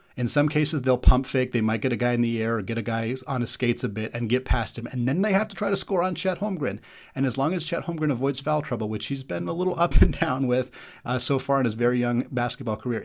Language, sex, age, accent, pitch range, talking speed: English, male, 30-49, American, 115-145 Hz, 300 wpm